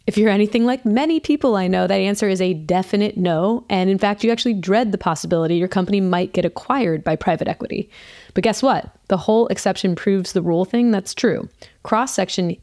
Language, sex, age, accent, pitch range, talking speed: English, female, 20-39, American, 175-210 Hz, 205 wpm